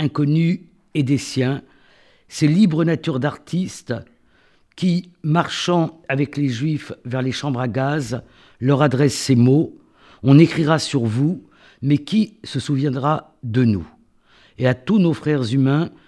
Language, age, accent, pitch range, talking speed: French, 60-79, French, 125-165 Hz, 140 wpm